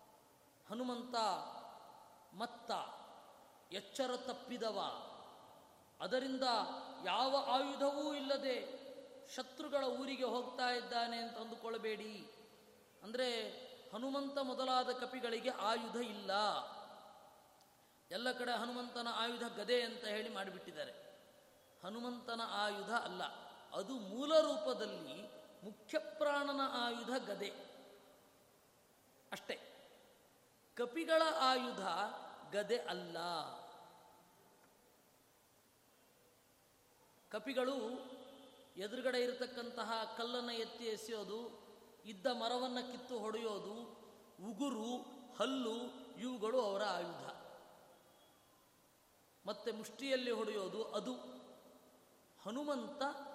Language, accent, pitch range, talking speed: Kannada, native, 220-265 Hz, 70 wpm